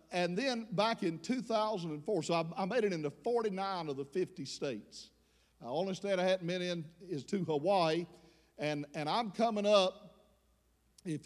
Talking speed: 175 wpm